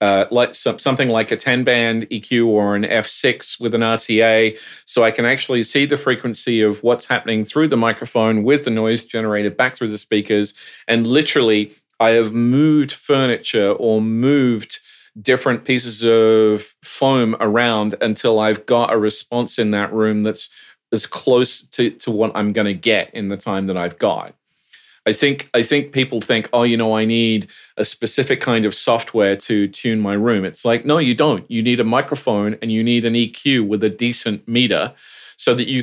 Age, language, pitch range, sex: 40-59, English, 105-120 Hz, male